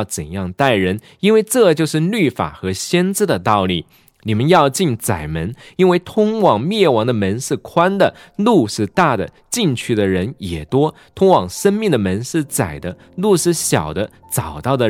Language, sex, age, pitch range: Chinese, male, 20-39, 110-180 Hz